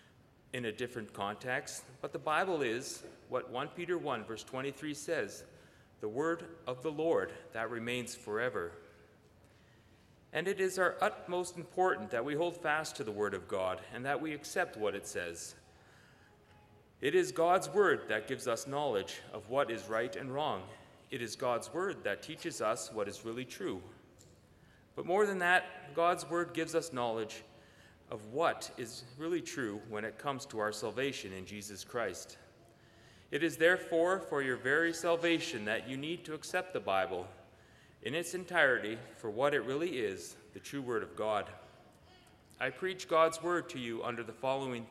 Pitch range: 110-155 Hz